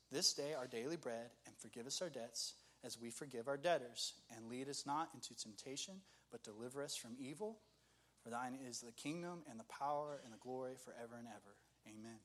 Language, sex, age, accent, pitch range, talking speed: English, male, 30-49, American, 125-150 Hz, 200 wpm